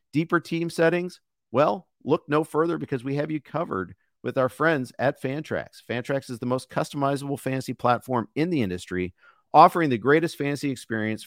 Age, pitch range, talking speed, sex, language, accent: 50-69, 110-150 Hz, 170 wpm, male, English, American